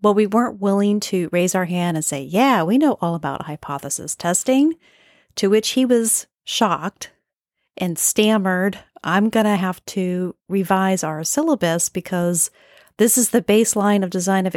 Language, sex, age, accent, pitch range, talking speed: English, female, 40-59, American, 165-220 Hz, 165 wpm